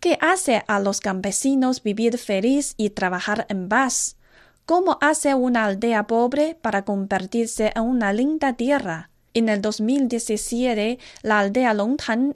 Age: 30-49